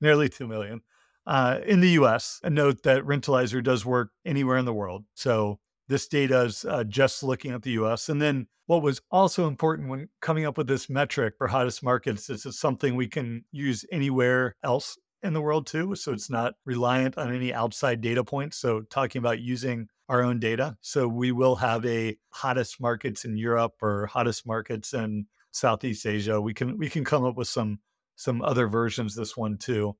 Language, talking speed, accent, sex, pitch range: English, 200 wpm, American, male, 115-145 Hz